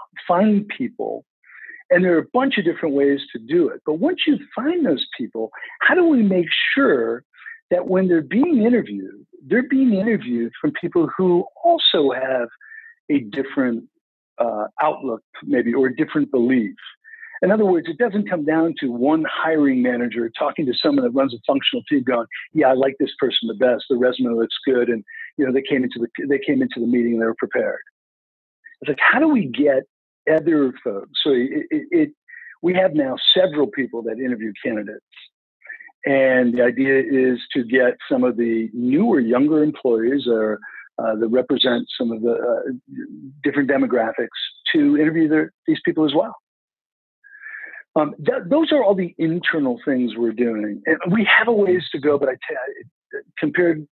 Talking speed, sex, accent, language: 180 wpm, male, American, English